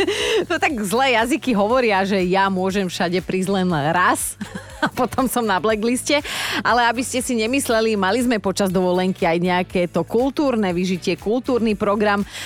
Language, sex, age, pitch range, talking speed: Slovak, female, 30-49, 180-230 Hz, 160 wpm